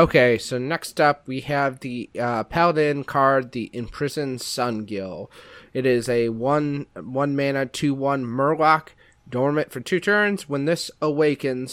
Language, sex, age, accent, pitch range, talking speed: English, male, 30-49, American, 115-135 Hz, 145 wpm